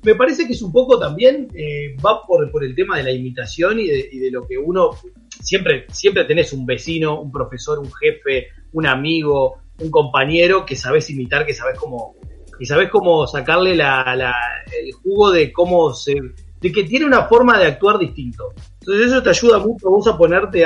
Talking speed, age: 200 wpm, 30-49